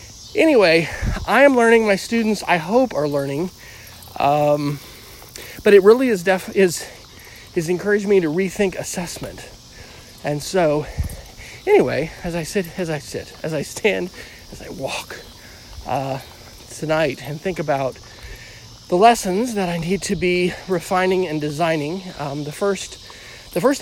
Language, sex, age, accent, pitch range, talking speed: English, male, 40-59, American, 140-185 Hz, 145 wpm